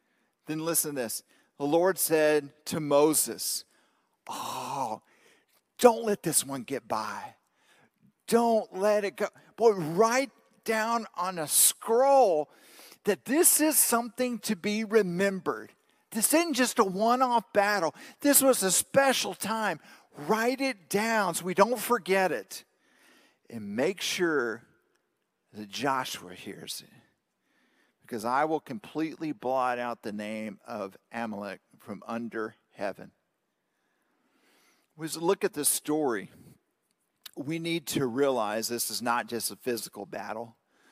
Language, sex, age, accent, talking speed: English, male, 50-69, American, 130 wpm